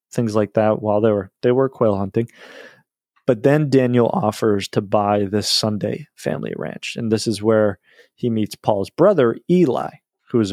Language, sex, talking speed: English, male, 175 wpm